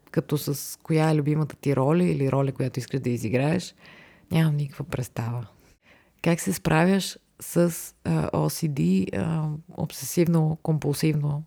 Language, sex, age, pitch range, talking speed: Bulgarian, female, 30-49, 140-165 Hz, 115 wpm